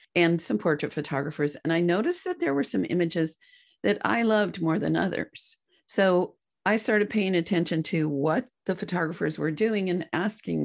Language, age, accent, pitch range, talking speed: English, 50-69, American, 155-210 Hz, 175 wpm